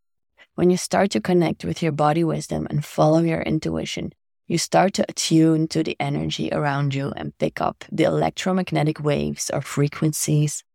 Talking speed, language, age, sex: 165 wpm, English, 20-39, female